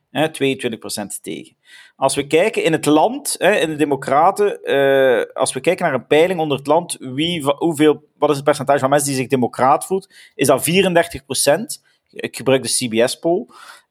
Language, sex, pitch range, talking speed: Dutch, male, 130-165 Hz, 175 wpm